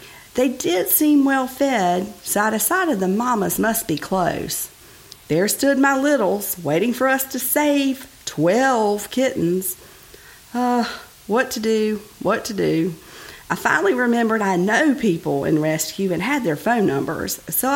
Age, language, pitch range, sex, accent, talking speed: 50-69, English, 170-255 Hz, female, American, 150 wpm